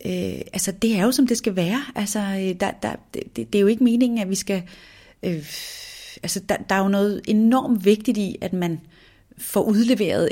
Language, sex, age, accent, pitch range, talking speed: Danish, female, 30-49, native, 175-210 Hz, 205 wpm